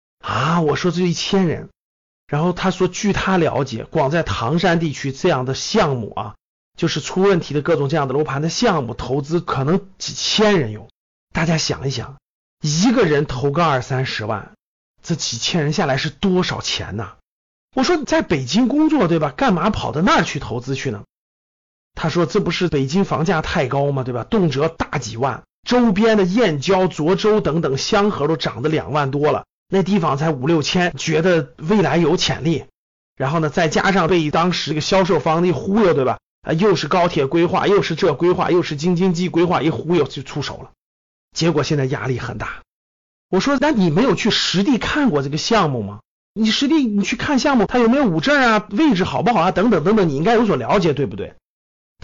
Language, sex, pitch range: Chinese, male, 140-195 Hz